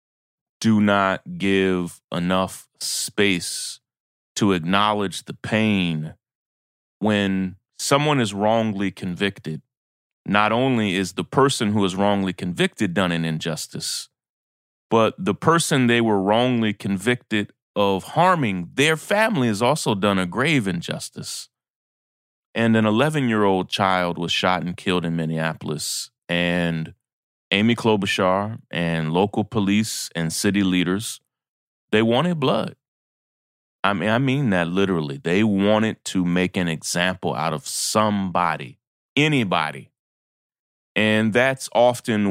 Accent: American